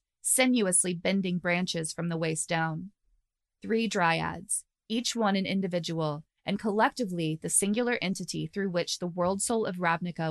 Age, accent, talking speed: 20-39, American, 145 wpm